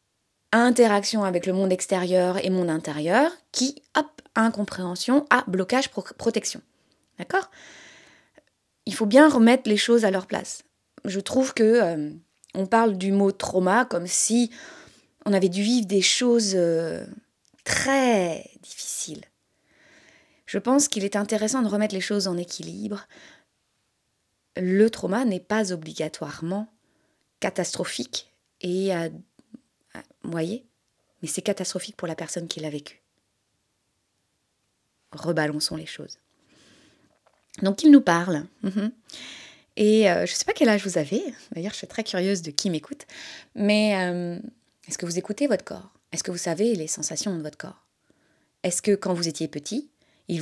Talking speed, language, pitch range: 150 wpm, French, 165-220 Hz